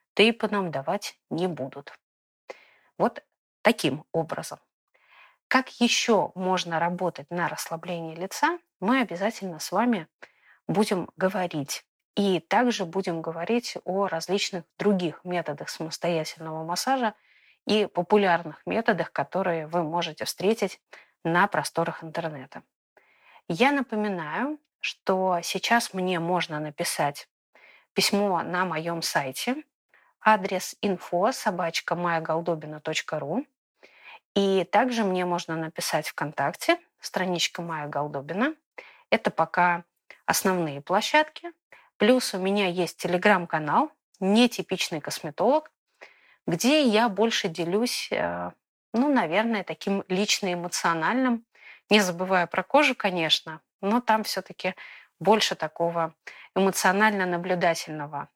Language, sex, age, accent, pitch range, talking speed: Russian, female, 20-39, native, 165-215 Hz, 100 wpm